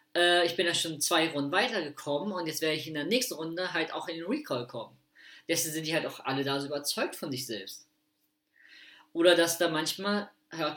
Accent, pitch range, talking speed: German, 145-200 Hz, 210 wpm